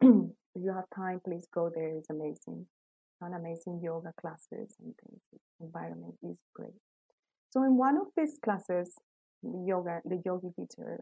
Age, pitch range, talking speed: 30-49, 170-230 Hz, 140 wpm